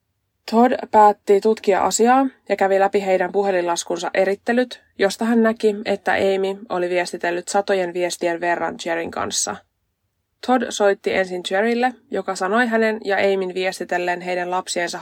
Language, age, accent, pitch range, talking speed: Finnish, 20-39, native, 180-210 Hz, 135 wpm